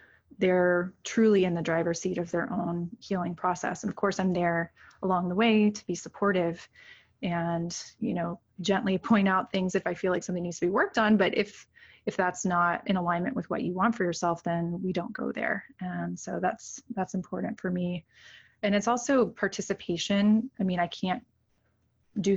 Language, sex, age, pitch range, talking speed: English, female, 20-39, 175-215 Hz, 195 wpm